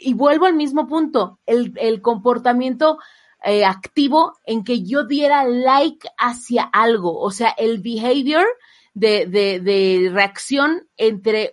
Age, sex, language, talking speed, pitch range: 30-49, female, Spanish, 135 wpm, 205-270 Hz